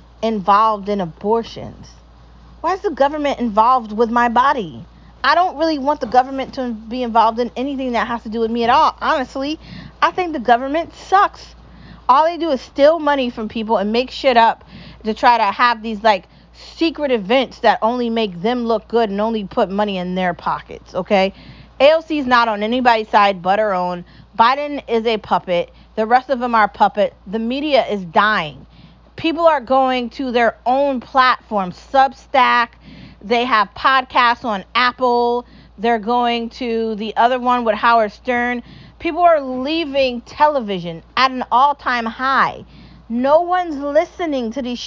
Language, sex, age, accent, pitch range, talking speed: English, female, 30-49, American, 220-285 Hz, 170 wpm